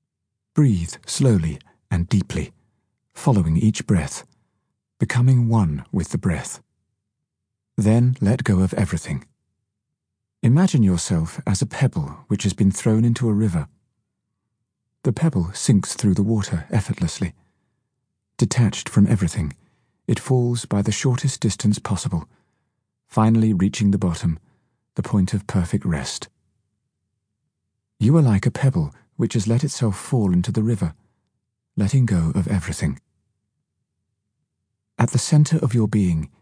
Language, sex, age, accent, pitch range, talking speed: English, male, 40-59, British, 95-120 Hz, 130 wpm